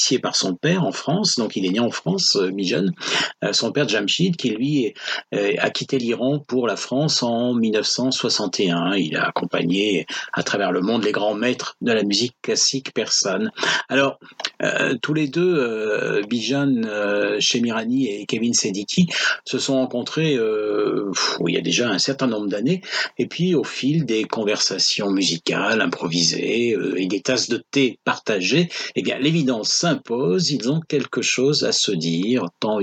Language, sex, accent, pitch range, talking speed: French, male, French, 105-140 Hz, 175 wpm